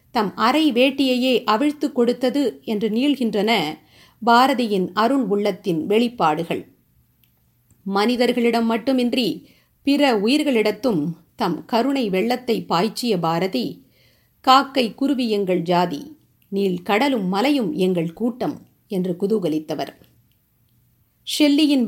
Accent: native